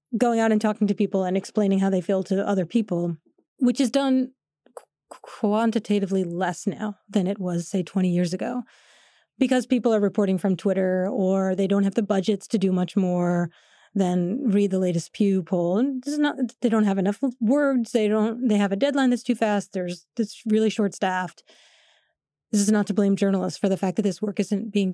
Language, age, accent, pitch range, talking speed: English, 30-49, American, 195-240 Hz, 200 wpm